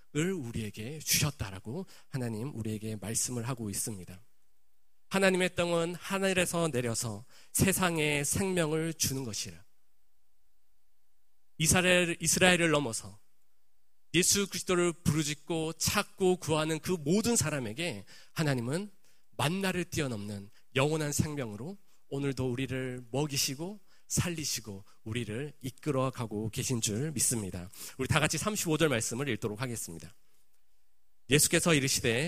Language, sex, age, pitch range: Korean, male, 40-59, 110-160 Hz